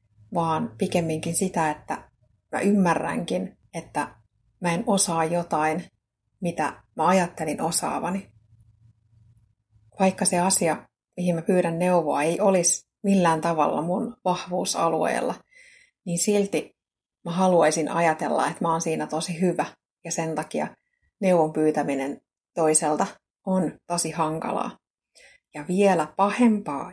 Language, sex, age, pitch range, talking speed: Finnish, female, 30-49, 160-195 Hz, 115 wpm